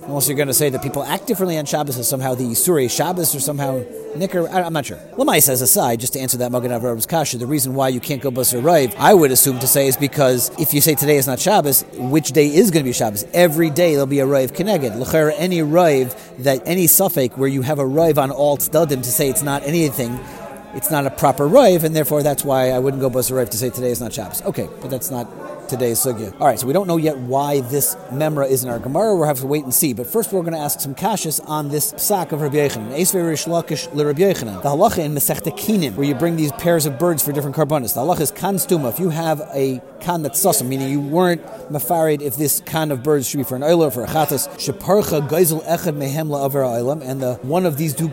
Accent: American